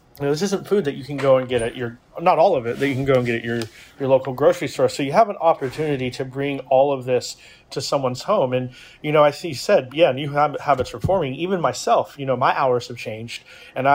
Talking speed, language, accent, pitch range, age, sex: 265 wpm, English, American, 125-150 Hz, 30-49, male